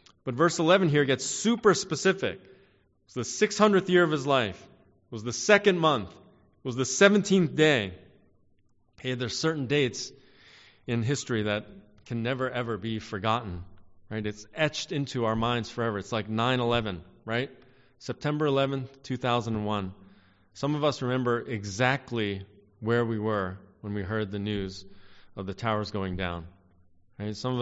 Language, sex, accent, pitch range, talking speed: English, male, American, 100-130 Hz, 155 wpm